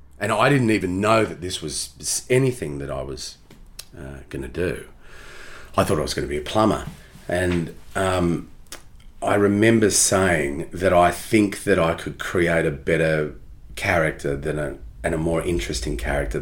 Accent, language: Australian, English